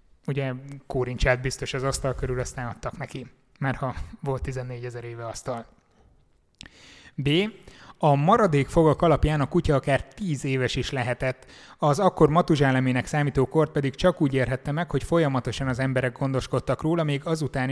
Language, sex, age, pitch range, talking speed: Hungarian, male, 30-49, 130-150 Hz, 155 wpm